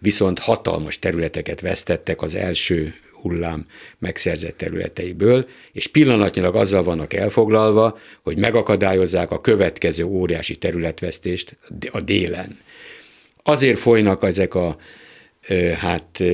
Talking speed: 95 wpm